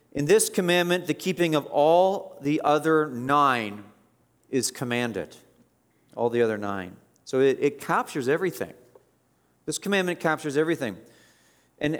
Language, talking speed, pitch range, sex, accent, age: English, 130 wpm, 115-150 Hz, male, American, 40-59